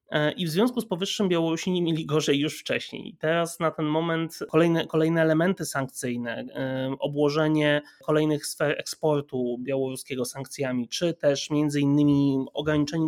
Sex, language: male, Polish